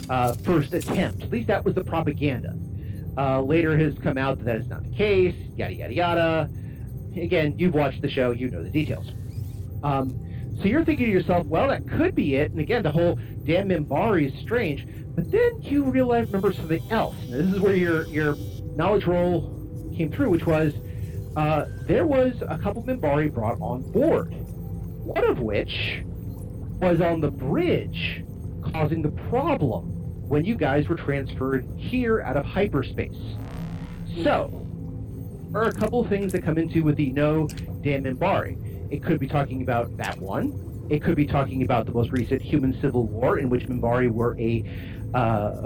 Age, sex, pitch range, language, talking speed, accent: 40-59, male, 115-155 Hz, English, 180 wpm, American